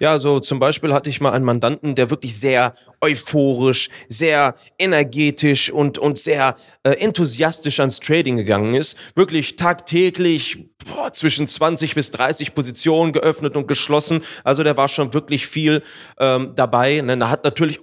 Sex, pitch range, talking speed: male, 130-155 Hz, 155 wpm